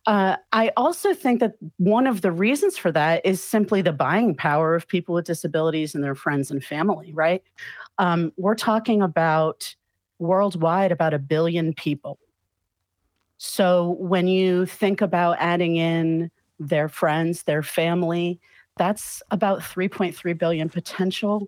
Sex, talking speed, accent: female, 140 wpm, American